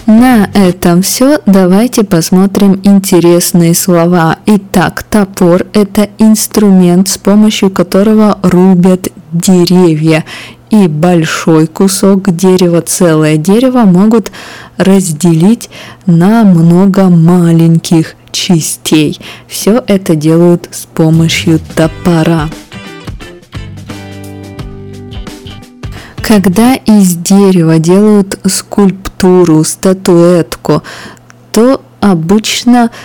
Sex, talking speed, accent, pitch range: female, 80 wpm, native, 165-200 Hz